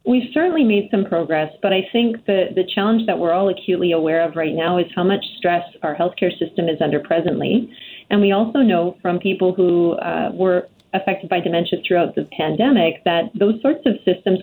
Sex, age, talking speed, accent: female, 30-49, 205 wpm, American